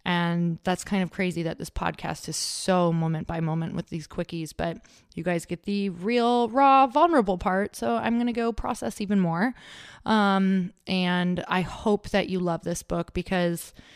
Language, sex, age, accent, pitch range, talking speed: English, female, 20-39, American, 175-205 Hz, 185 wpm